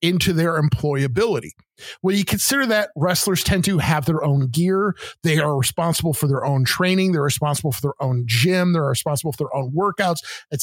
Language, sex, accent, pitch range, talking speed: English, male, American, 150-195 Hz, 190 wpm